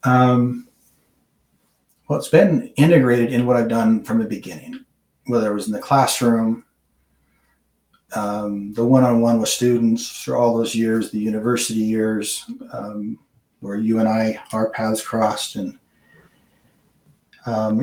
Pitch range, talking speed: 110-125 Hz, 135 wpm